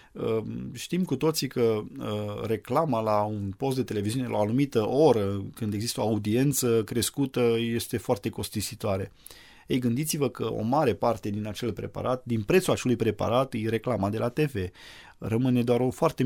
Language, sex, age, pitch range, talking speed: Romanian, male, 20-39, 110-135 Hz, 160 wpm